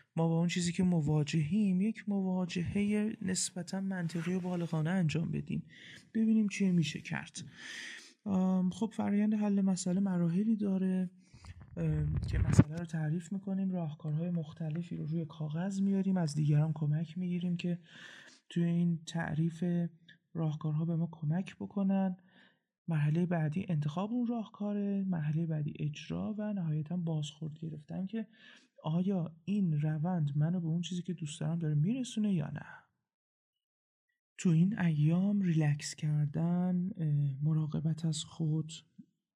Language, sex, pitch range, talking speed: Persian, male, 155-185 Hz, 125 wpm